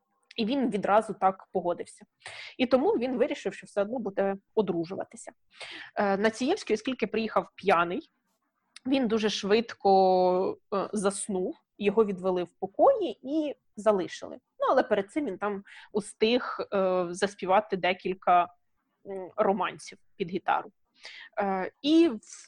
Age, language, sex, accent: 20-39, Ukrainian, female, native